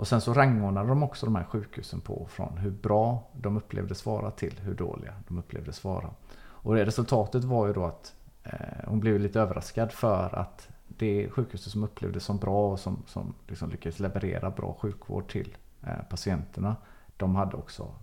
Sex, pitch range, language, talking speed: male, 95-115 Hz, Swedish, 180 wpm